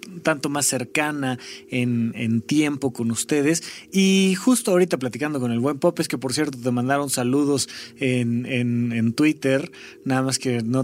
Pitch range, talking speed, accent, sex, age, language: 130-175 Hz, 165 wpm, Mexican, male, 30-49, Spanish